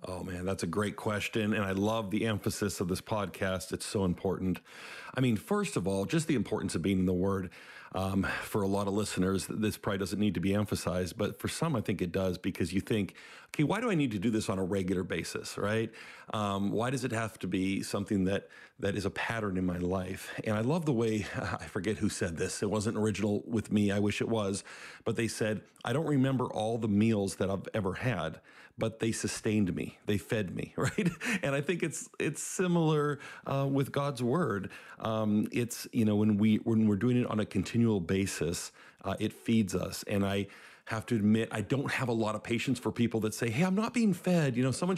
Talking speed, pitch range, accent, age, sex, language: 230 wpm, 100-135 Hz, American, 50-69, male, English